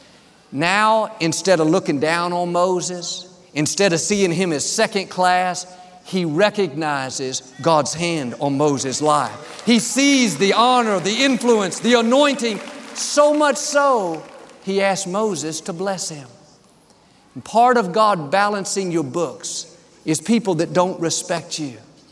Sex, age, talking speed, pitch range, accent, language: male, 50-69, 135 wpm, 165-215 Hz, American, English